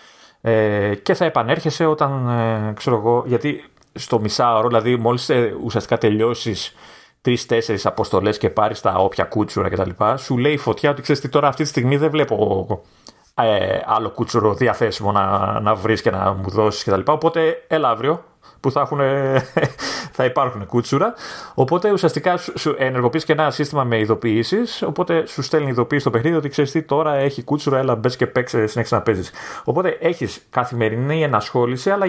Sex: male